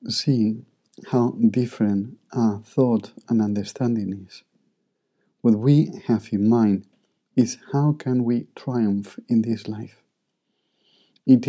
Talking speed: 115 wpm